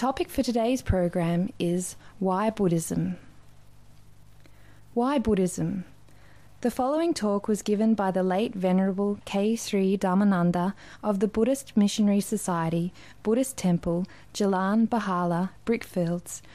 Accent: Australian